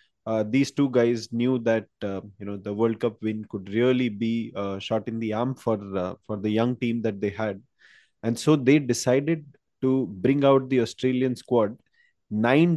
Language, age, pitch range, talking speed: English, 20-39, 110-130 Hz, 195 wpm